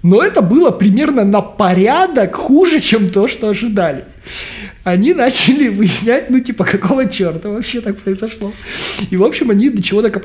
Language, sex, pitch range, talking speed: Russian, male, 165-215 Hz, 165 wpm